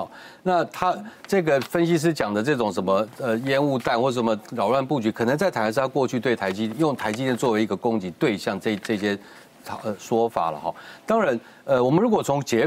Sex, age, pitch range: male, 30-49, 110-155 Hz